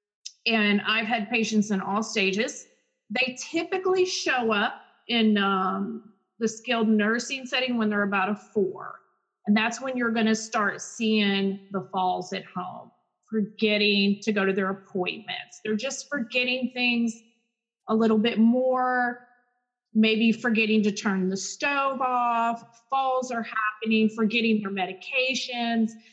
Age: 30-49